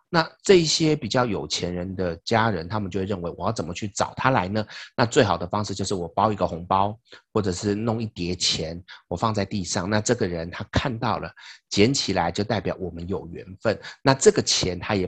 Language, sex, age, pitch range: Chinese, male, 30-49, 90-110 Hz